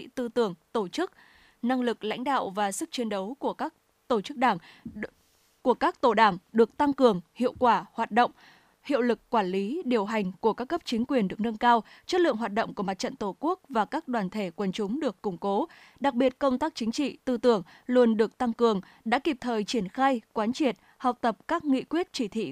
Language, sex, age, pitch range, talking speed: Vietnamese, female, 10-29, 220-265 Hz, 230 wpm